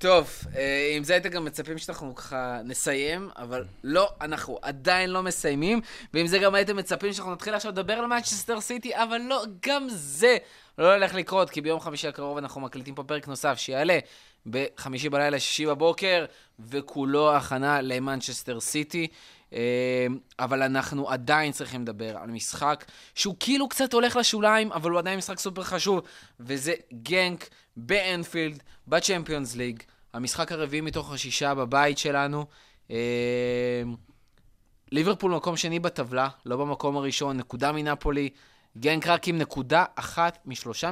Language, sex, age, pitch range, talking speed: Hebrew, male, 20-39, 130-175 Hz, 140 wpm